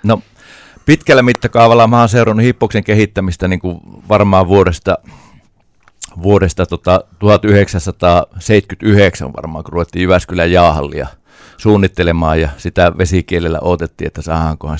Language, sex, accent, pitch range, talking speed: Finnish, male, native, 85-100 Hz, 110 wpm